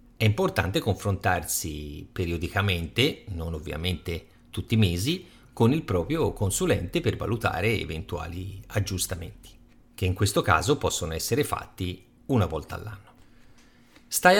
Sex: male